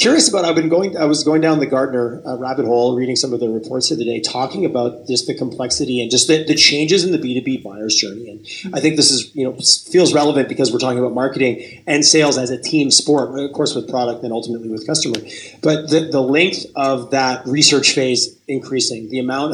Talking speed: 230 wpm